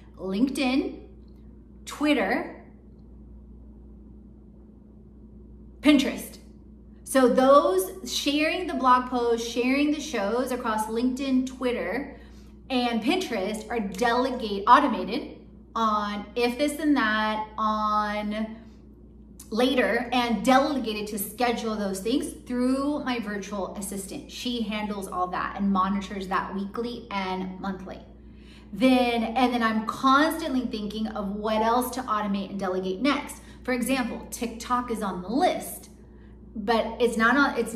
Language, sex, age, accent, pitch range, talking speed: English, female, 30-49, American, 210-255 Hz, 115 wpm